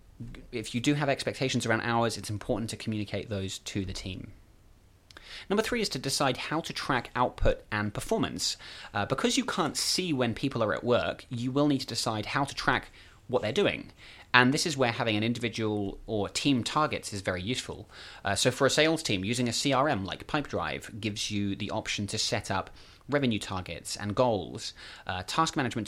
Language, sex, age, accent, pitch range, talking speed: English, male, 30-49, British, 100-130 Hz, 195 wpm